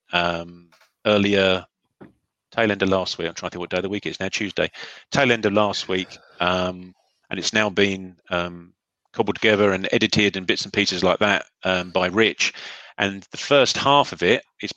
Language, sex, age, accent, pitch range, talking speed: English, male, 30-49, British, 90-105 Hz, 205 wpm